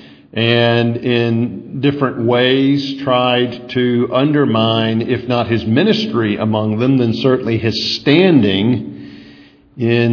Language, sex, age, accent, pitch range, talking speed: English, male, 50-69, American, 115-140 Hz, 105 wpm